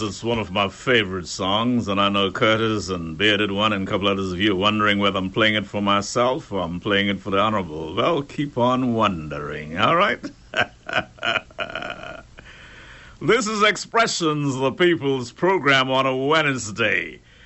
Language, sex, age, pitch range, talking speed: English, male, 60-79, 105-140 Hz, 165 wpm